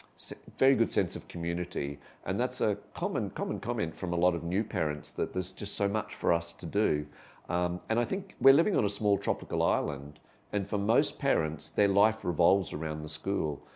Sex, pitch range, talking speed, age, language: male, 80-100 Hz, 205 wpm, 50-69, English